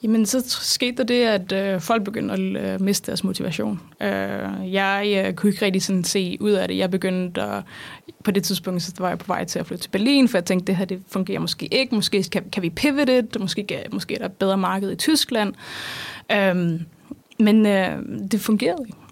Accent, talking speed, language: native, 230 wpm, Danish